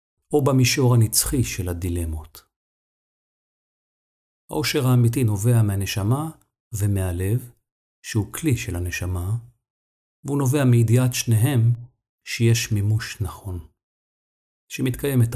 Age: 50-69